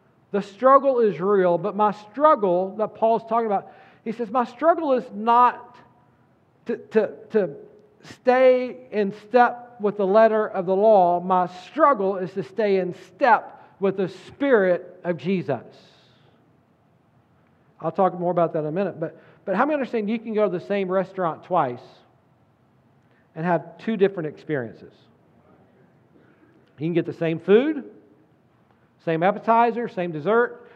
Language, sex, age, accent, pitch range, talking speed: English, male, 50-69, American, 175-230 Hz, 150 wpm